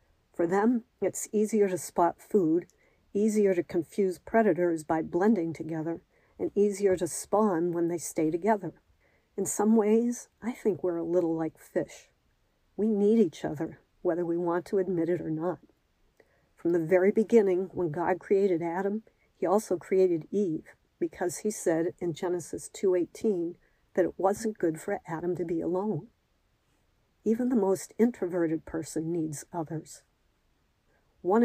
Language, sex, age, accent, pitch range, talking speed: English, female, 50-69, American, 165-200 Hz, 150 wpm